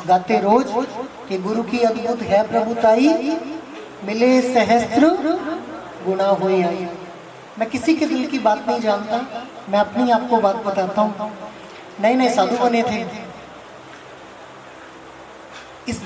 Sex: female